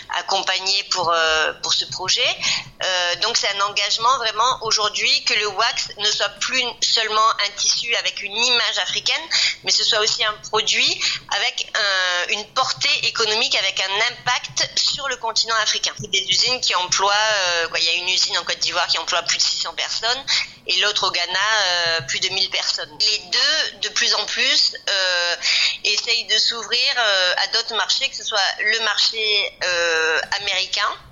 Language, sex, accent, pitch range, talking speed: French, female, French, 180-220 Hz, 175 wpm